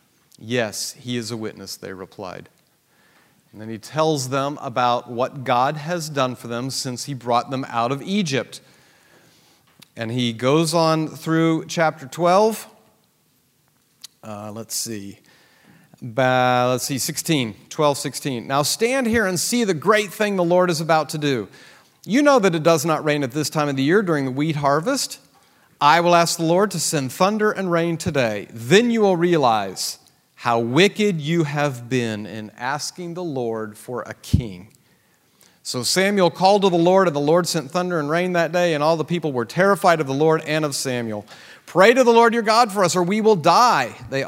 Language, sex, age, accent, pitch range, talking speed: English, male, 40-59, American, 125-175 Hz, 190 wpm